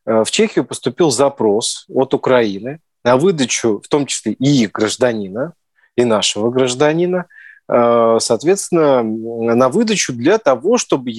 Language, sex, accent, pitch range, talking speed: Russian, male, native, 120-155 Hz, 120 wpm